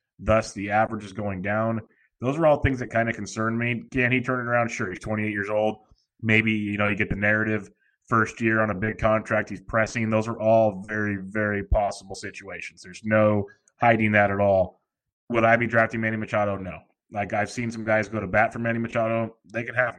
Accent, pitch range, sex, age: American, 100-115 Hz, male, 20-39